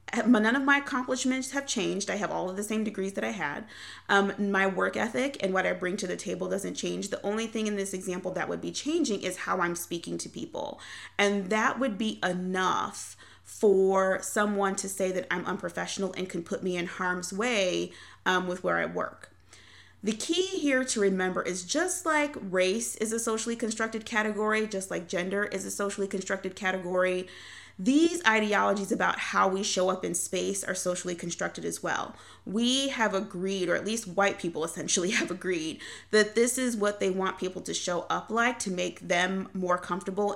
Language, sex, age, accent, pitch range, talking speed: English, female, 30-49, American, 180-215 Hz, 195 wpm